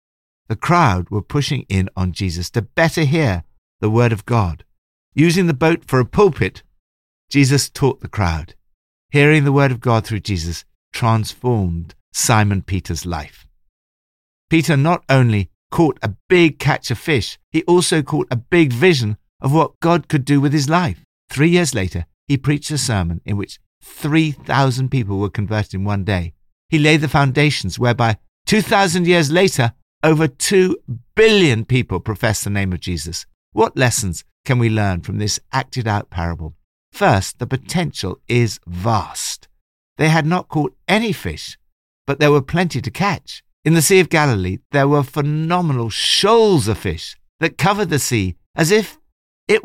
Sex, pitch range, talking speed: male, 95-155 Hz, 165 wpm